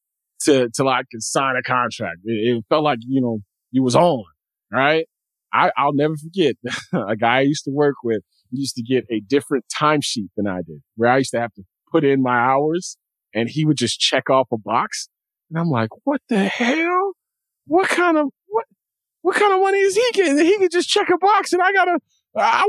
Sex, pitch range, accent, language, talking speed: male, 110-165 Hz, American, English, 215 wpm